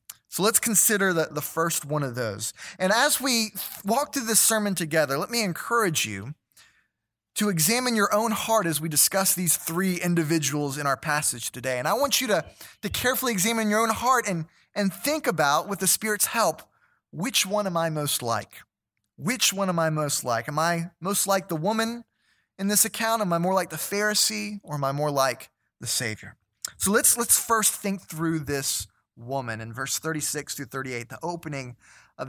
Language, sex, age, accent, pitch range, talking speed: English, male, 20-39, American, 140-210 Hz, 195 wpm